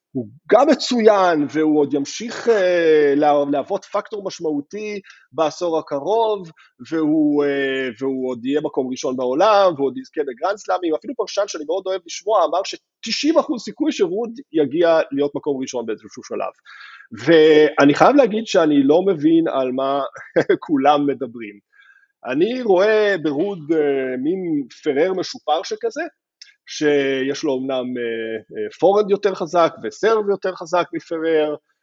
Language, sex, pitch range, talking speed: Hebrew, male, 145-235 Hz, 125 wpm